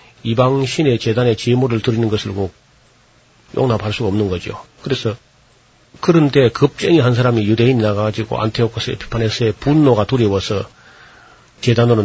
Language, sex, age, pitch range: Korean, male, 40-59, 110-130 Hz